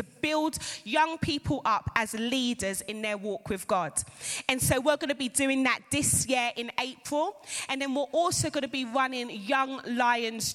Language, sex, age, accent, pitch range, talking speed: English, female, 20-39, British, 240-320 Hz, 190 wpm